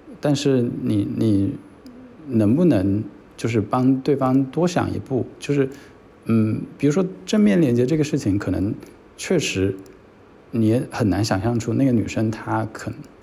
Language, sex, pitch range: Chinese, male, 100-135 Hz